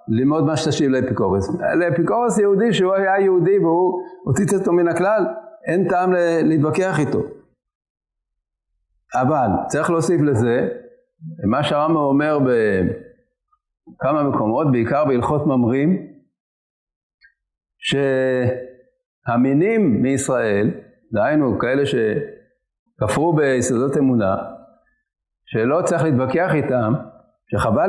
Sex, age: male, 50-69